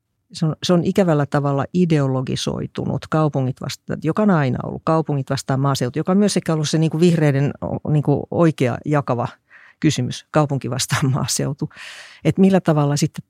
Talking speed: 150 wpm